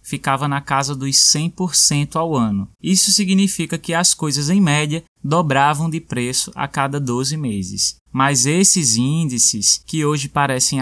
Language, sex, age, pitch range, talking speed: Portuguese, male, 20-39, 130-170 Hz, 150 wpm